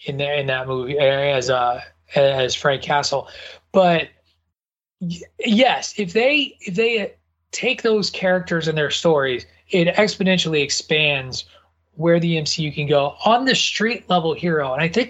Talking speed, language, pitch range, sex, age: 150 wpm, English, 145-190 Hz, male, 30-49